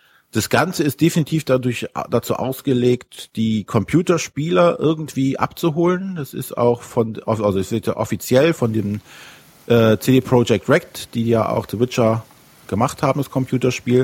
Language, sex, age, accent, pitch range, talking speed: German, male, 50-69, German, 110-130 Hz, 140 wpm